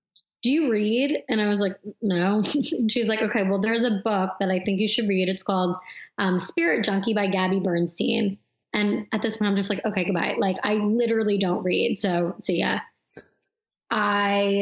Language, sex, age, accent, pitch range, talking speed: English, female, 20-39, American, 195-235 Hz, 200 wpm